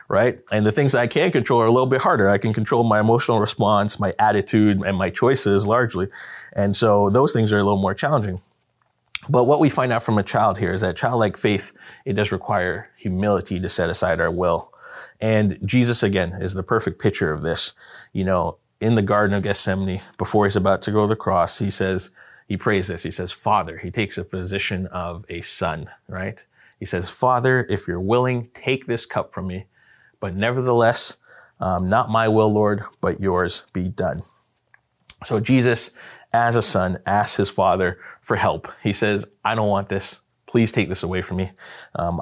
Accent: American